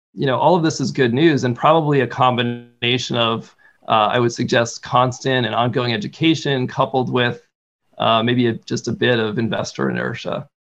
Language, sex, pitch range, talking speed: English, male, 120-145 Hz, 175 wpm